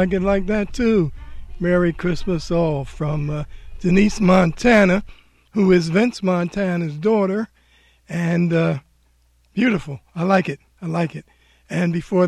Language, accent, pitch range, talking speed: English, American, 160-200 Hz, 130 wpm